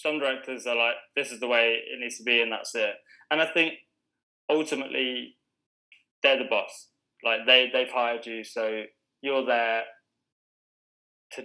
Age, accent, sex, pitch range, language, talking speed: 20-39, British, male, 115-135 Hz, English, 170 wpm